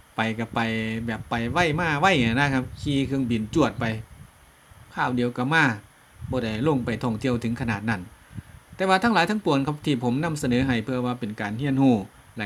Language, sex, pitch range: Thai, male, 115-145 Hz